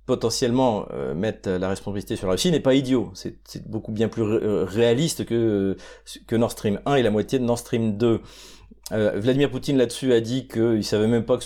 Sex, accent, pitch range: male, French, 105-130 Hz